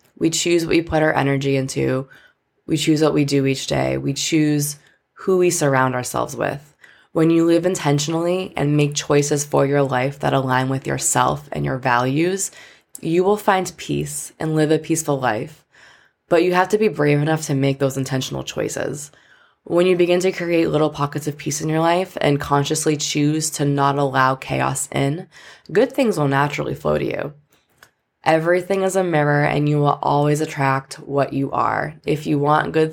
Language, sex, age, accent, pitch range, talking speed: English, female, 20-39, American, 140-165 Hz, 190 wpm